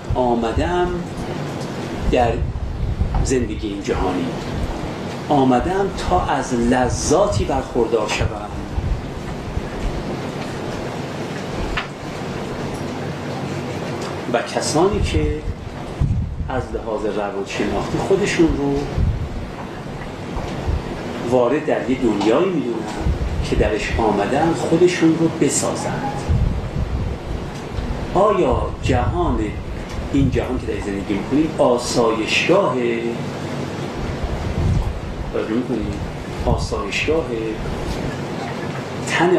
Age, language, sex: 40-59, Persian, male